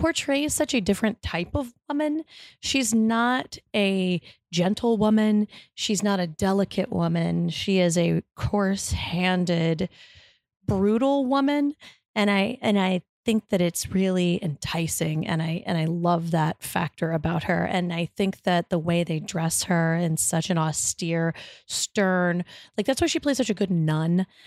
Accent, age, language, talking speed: American, 30-49, English, 155 wpm